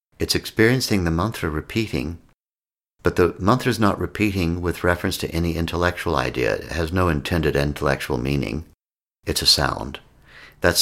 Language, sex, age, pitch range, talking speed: English, male, 60-79, 75-90 Hz, 150 wpm